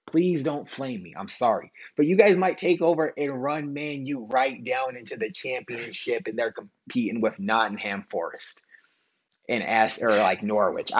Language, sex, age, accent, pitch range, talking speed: English, male, 20-39, American, 130-165 Hz, 175 wpm